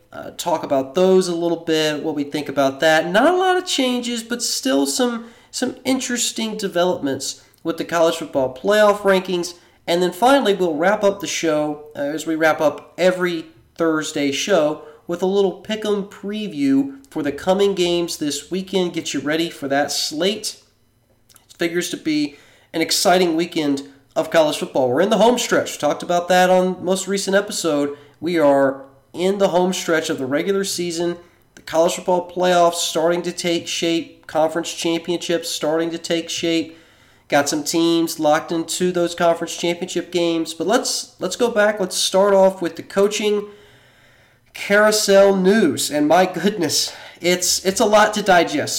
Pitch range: 150-195 Hz